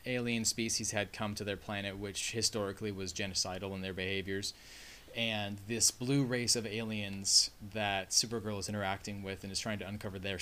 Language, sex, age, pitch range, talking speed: English, male, 20-39, 95-115 Hz, 180 wpm